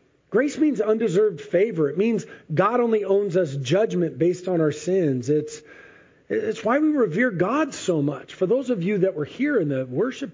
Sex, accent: male, American